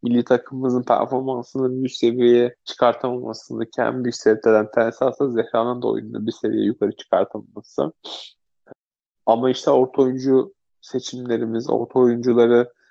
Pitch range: 115-130 Hz